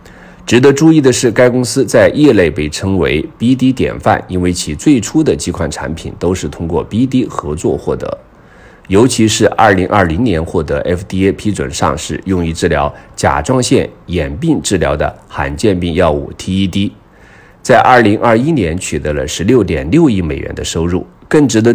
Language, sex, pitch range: Chinese, male, 80-105 Hz